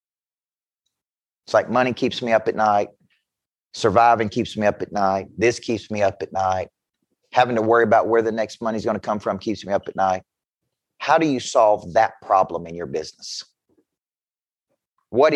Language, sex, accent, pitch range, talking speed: English, male, American, 115-165 Hz, 190 wpm